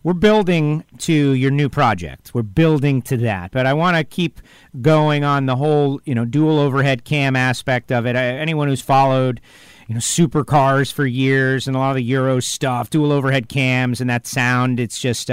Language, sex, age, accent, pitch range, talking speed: English, male, 40-59, American, 130-165 Hz, 200 wpm